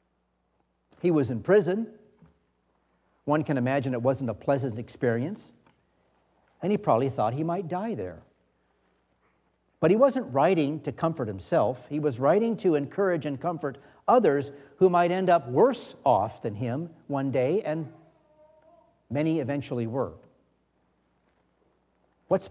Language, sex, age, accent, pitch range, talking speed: English, male, 50-69, American, 120-170 Hz, 135 wpm